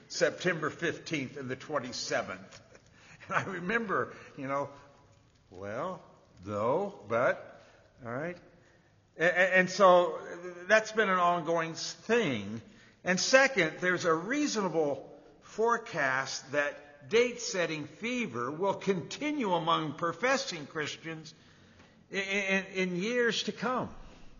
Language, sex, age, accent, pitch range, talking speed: English, male, 60-79, American, 140-200 Hz, 100 wpm